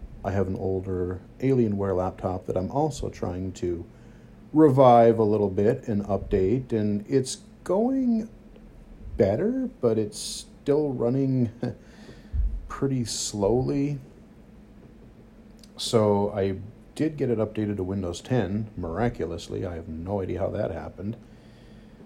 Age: 40-59